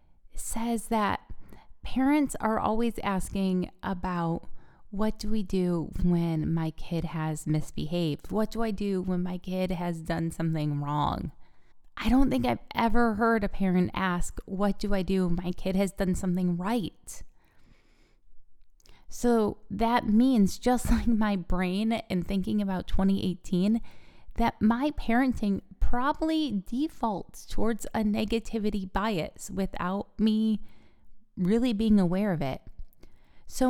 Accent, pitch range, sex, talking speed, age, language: American, 180-225 Hz, female, 135 wpm, 20-39, English